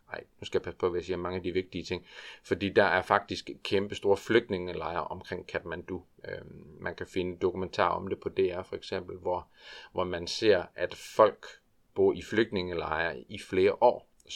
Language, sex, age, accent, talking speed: Danish, male, 40-59, native, 195 wpm